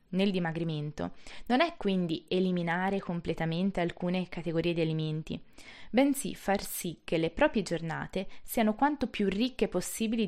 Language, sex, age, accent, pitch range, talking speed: Italian, female, 20-39, native, 160-200 Hz, 135 wpm